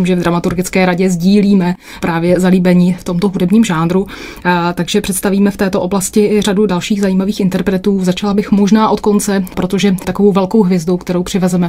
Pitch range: 175-195 Hz